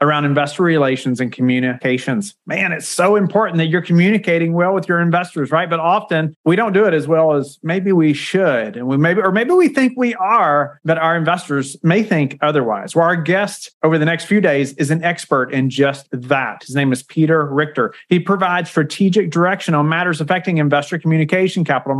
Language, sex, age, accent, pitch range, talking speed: English, male, 40-59, American, 145-185 Hz, 200 wpm